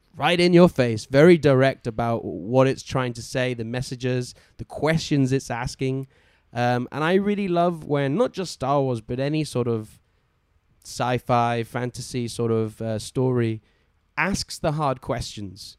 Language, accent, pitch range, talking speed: English, British, 115-145 Hz, 160 wpm